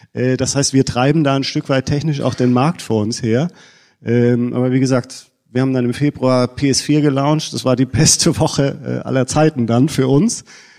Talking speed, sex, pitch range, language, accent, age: 195 wpm, male, 115-135 Hz, German, German, 40-59